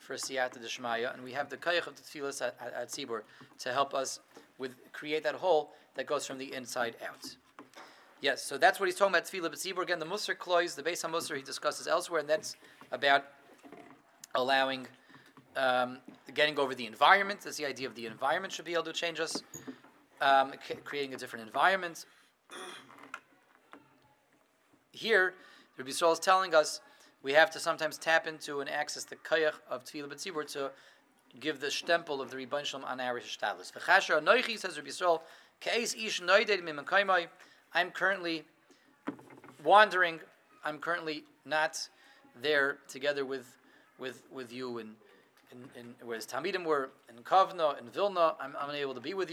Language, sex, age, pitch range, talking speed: English, male, 30-49, 135-170 Hz, 165 wpm